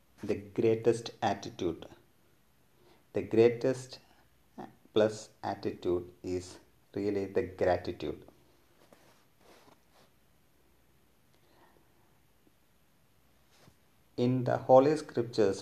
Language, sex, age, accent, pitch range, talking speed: English, male, 50-69, Indian, 105-120 Hz, 60 wpm